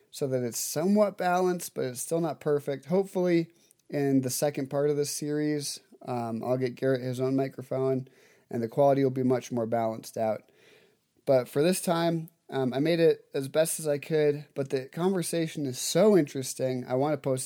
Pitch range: 130-150 Hz